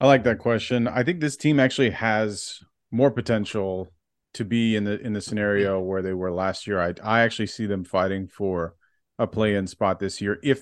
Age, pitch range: 30-49, 95-115 Hz